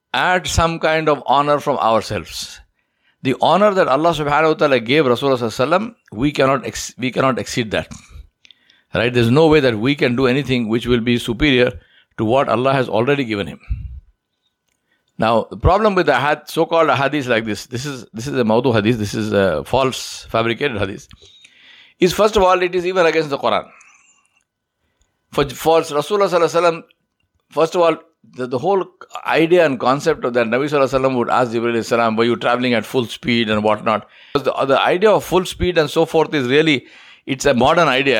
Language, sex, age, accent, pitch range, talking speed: English, male, 60-79, Indian, 115-155 Hz, 195 wpm